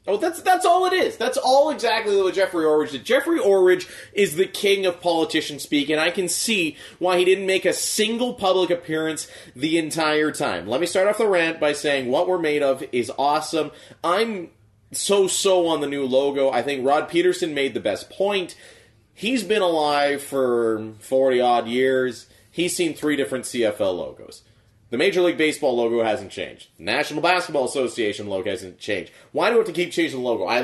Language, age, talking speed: English, 30-49, 200 wpm